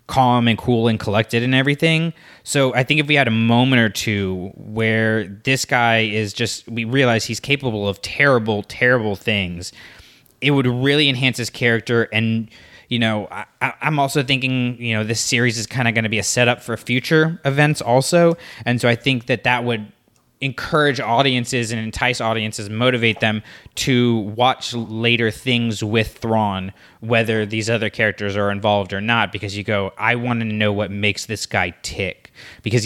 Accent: American